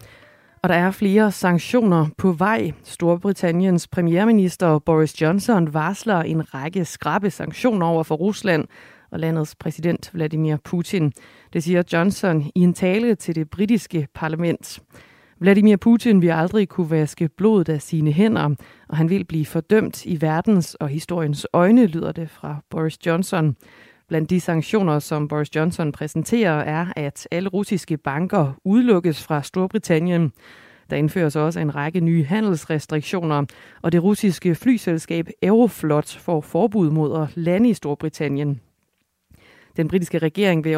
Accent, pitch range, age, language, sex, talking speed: native, 155-190 Hz, 30-49, Danish, female, 145 wpm